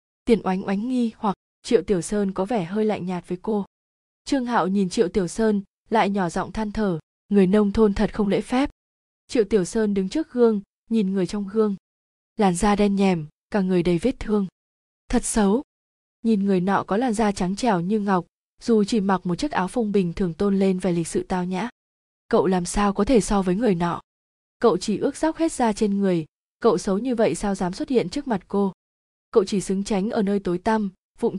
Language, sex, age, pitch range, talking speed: Vietnamese, female, 20-39, 185-225 Hz, 225 wpm